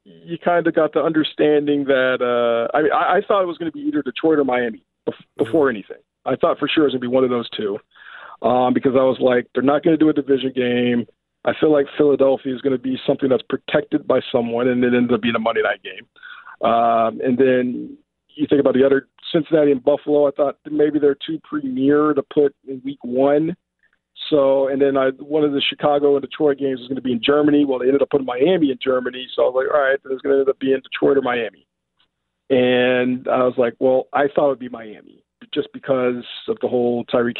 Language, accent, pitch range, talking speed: English, American, 125-150 Hz, 250 wpm